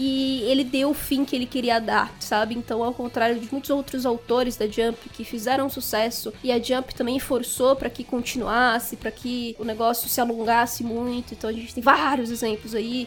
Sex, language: female, Portuguese